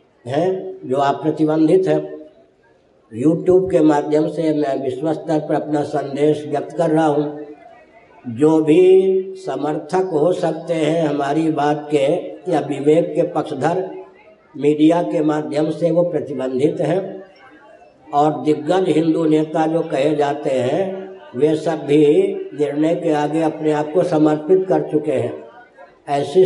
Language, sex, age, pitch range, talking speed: Hindi, female, 60-79, 150-175 Hz, 140 wpm